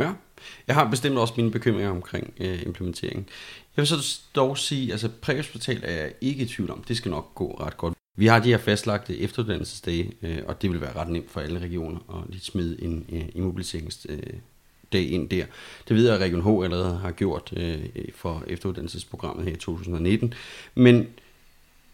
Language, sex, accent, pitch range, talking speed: Danish, male, native, 90-120 Hz, 190 wpm